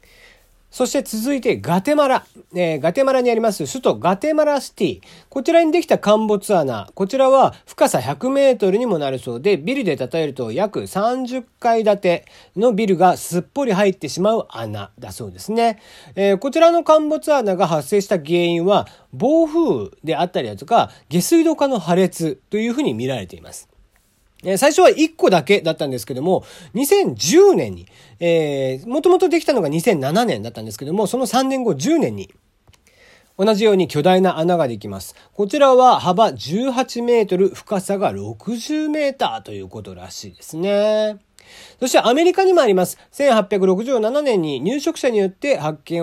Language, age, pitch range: Japanese, 40-59, 155-255 Hz